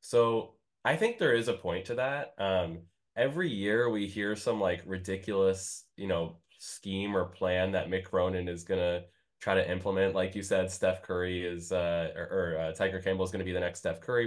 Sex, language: male, English